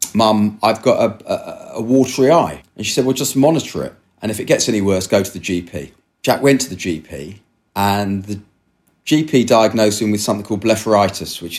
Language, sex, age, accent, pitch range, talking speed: English, male, 40-59, British, 95-110 Hz, 200 wpm